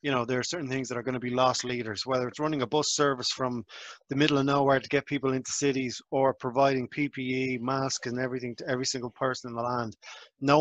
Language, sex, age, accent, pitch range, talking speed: English, male, 20-39, Irish, 125-145 Hz, 245 wpm